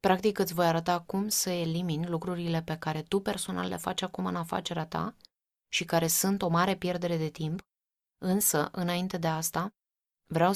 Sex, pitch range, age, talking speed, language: female, 150-175 Hz, 20-39, 175 wpm, Romanian